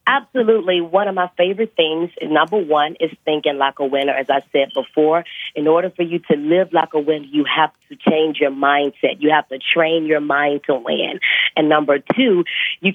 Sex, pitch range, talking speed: female, 155-205 Hz, 205 wpm